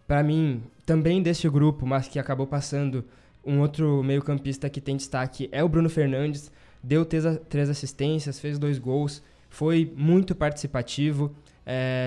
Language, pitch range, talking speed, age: Portuguese, 135-155 Hz, 150 wpm, 20-39